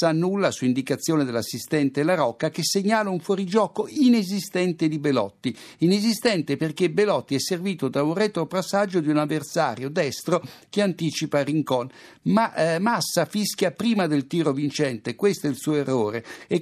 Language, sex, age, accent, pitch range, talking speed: Italian, male, 60-79, native, 140-185 Hz, 155 wpm